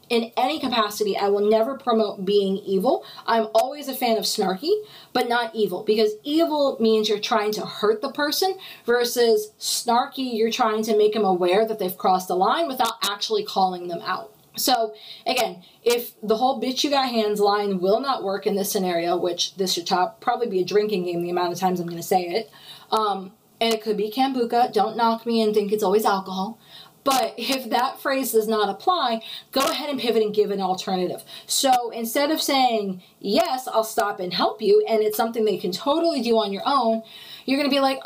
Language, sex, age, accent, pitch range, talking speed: English, female, 20-39, American, 205-250 Hz, 210 wpm